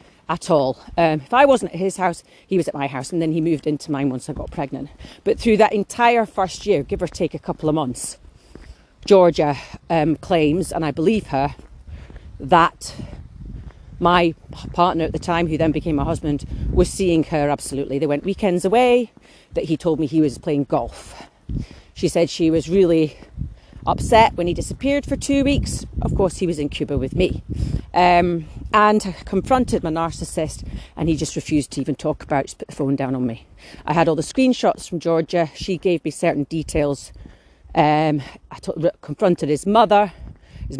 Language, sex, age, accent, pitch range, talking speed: English, female, 40-59, British, 145-190 Hz, 195 wpm